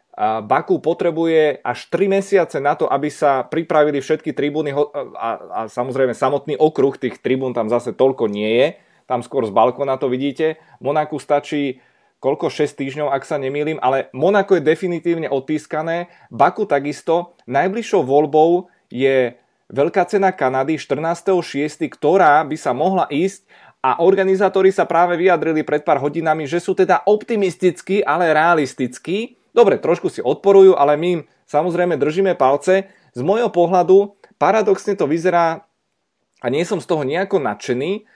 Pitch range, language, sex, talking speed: 140-180 Hz, Slovak, male, 145 wpm